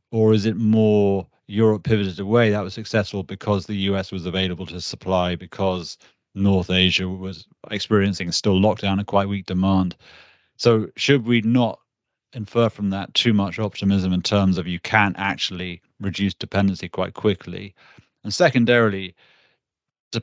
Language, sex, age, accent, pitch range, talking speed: English, male, 40-59, British, 95-110 Hz, 150 wpm